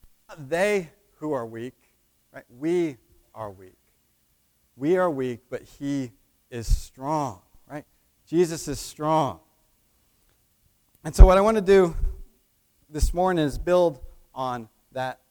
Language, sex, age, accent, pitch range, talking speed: English, male, 40-59, American, 120-185 Hz, 125 wpm